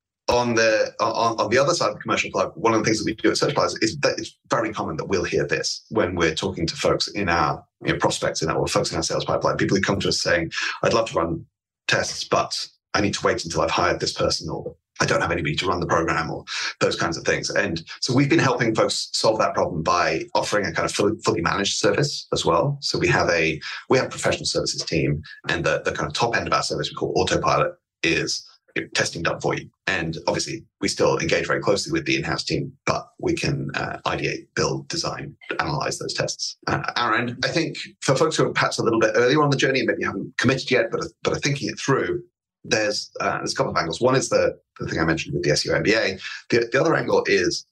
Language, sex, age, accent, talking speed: English, male, 30-49, British, 255 wpm